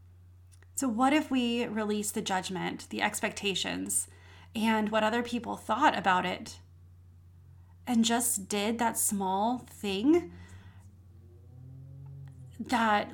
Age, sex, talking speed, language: 30-49, female, 105 wpm, English